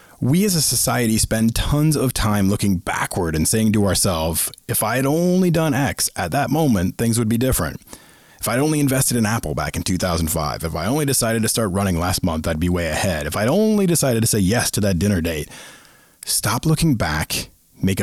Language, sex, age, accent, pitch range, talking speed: English, male, 30-49, American, 90-135 Hz, 215 wpm